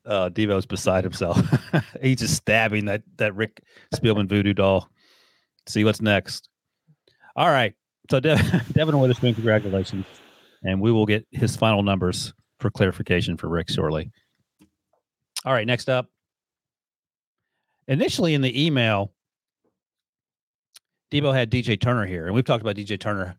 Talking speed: 140 wpm